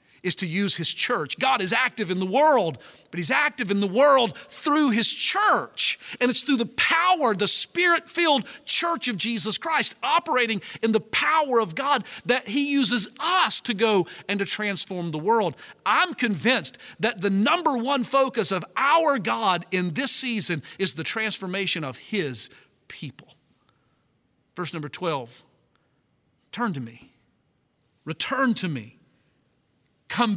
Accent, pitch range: American, 150-235 Hz